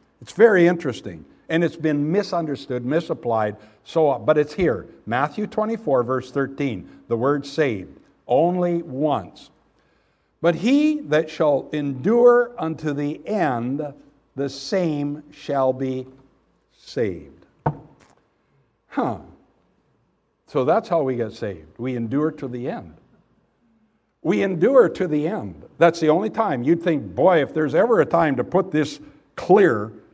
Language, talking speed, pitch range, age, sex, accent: English, 135 wpm, 125-165 Hz, 60-79, male, American